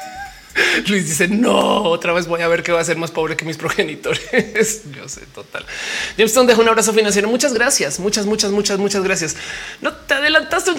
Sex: male